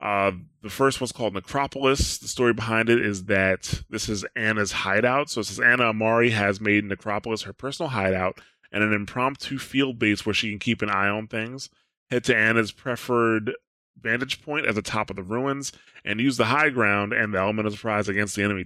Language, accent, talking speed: English, American, 210 wpm